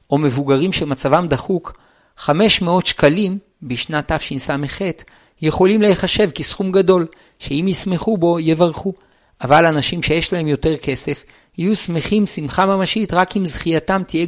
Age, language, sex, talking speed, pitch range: 50-69, Hebrew, male, 125 wpm, 150-190 Hz